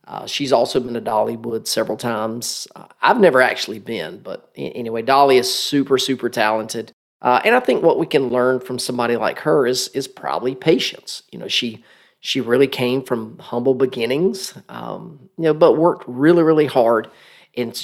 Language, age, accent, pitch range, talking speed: English, 40-59, American, 120-145 Hz, 180 wpm